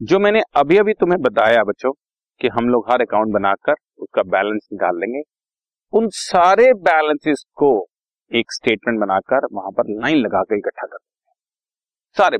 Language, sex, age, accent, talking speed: Hindi, male, 40-59, native, 155 wpm